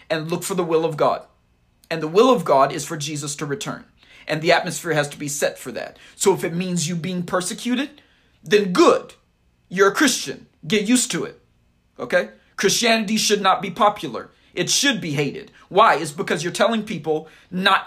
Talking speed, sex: 200 wpm, male